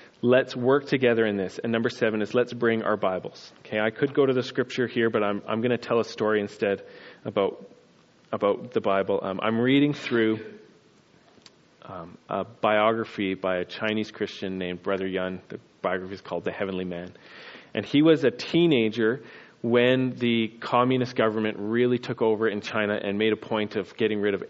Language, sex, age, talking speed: English, male, 30-49, 190 wpm